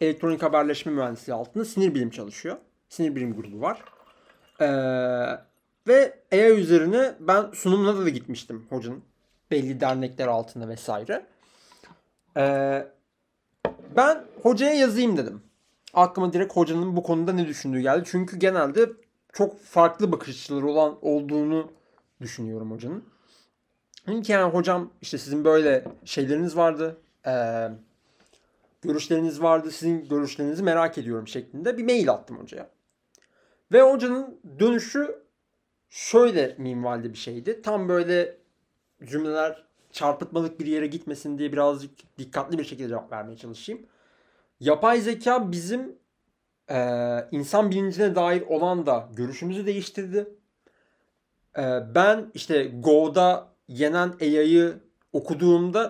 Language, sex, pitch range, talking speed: Turkish, male, 135-195 Hz, 110 wpm